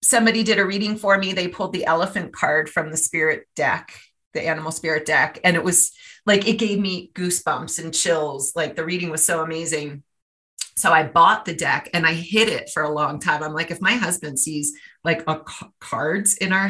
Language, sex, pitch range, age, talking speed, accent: English, female, 155-195 Hz, 30-49, 210 wpm, American